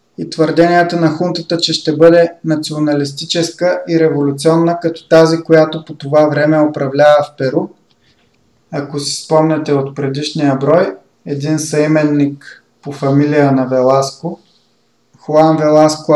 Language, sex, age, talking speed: Bulgarian, male, 20-39, 125 wpm